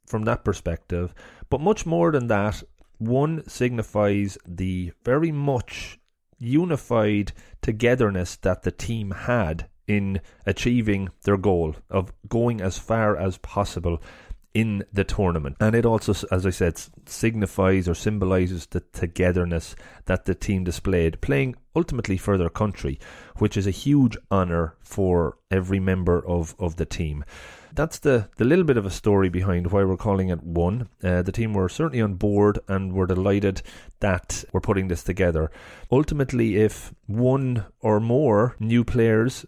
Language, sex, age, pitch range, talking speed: English, male, 30-49, 90-115 Hz, 150 wpm